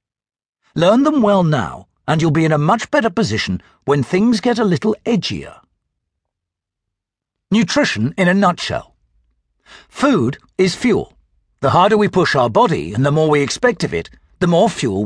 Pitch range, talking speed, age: 130-215 Hz, 165 wpm, 60-79